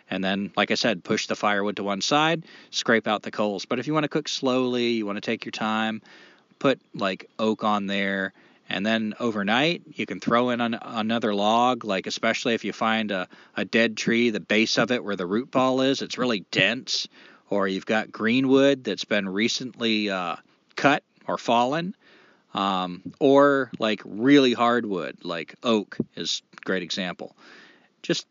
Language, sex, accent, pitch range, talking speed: English, male, American, 110-145 Hz, 180 wpm